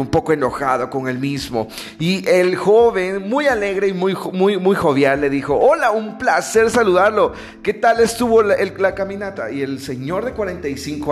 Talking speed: 185 wpm